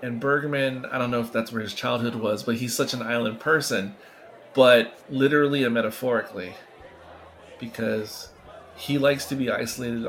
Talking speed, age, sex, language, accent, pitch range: 160 wpm, 30-49, male, English, American, 110-125 Hz